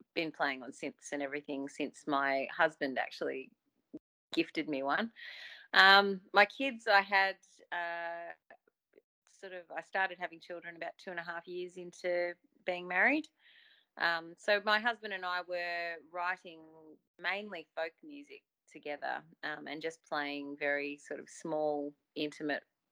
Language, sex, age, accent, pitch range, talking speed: English, female, 30-49, Australian, 145-180 Hz, 145 wpm